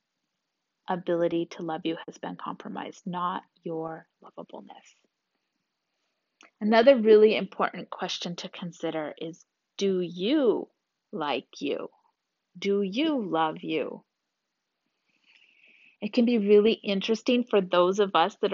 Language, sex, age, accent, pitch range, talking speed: English, female, 30-49, American, 185-250 Hz, 115 wpm